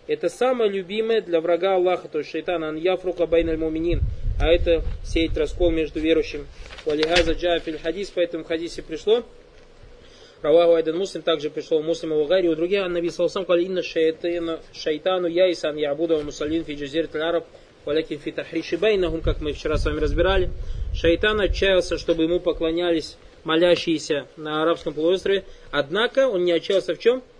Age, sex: 20-39, male